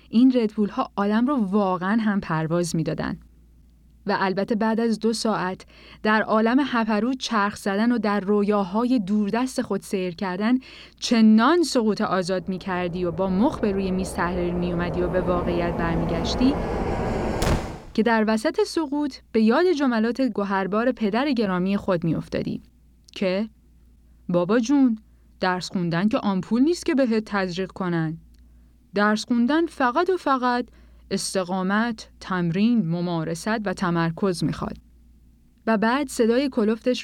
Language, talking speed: Persian, 135 wpm